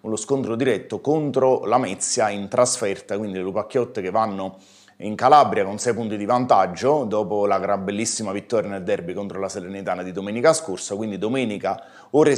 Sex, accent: male, native